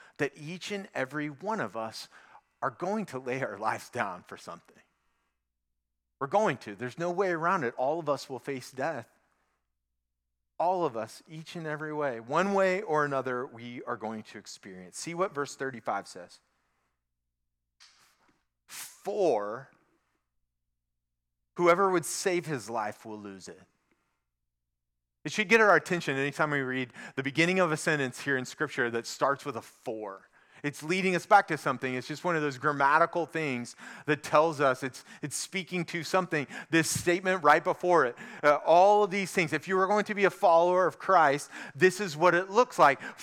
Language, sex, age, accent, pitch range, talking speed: English, male, 40-59, American, 115-180 Hz, 180 wpm